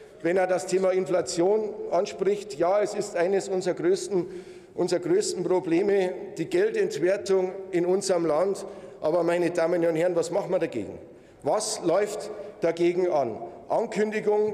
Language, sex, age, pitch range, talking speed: German, male, 50-69, 180-210 Hz, 140 wpm